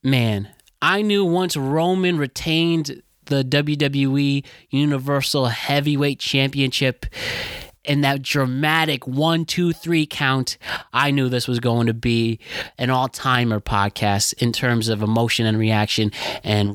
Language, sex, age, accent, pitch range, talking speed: English, male, 20-39, American, 120-165 Hz, 125 wpm